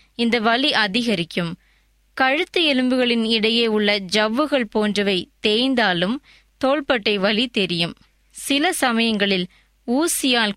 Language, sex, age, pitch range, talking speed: Tamil, female, 20-39, 195-255 Hz, 90 wpm